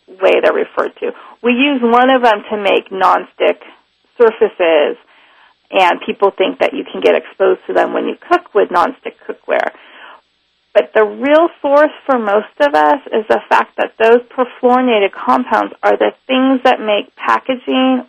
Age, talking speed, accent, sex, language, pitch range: 30-49, 165 wpm, American, female, English, 210-290 Hz